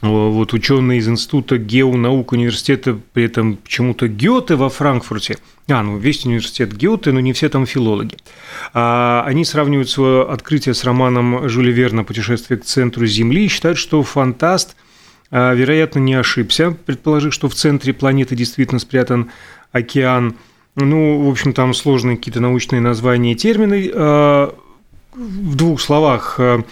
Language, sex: Russian, male